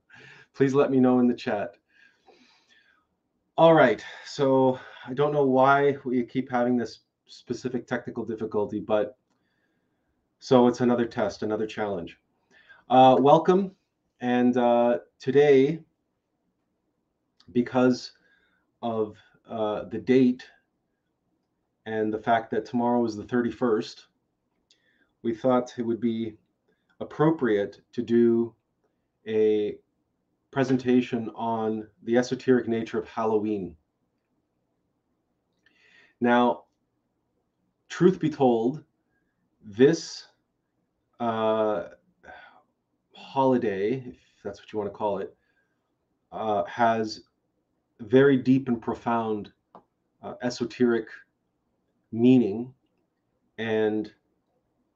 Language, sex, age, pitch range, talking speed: English, male, 30-49, 105-130 Hz, 95 wpm